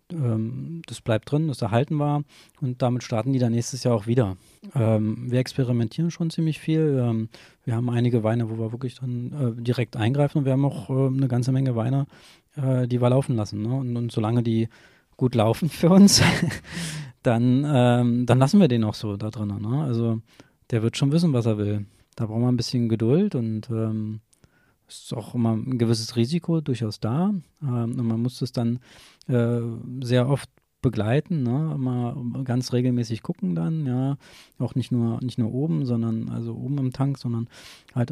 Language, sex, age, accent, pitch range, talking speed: German, male, 20-39, German, 115-135 Hz, 175 wpm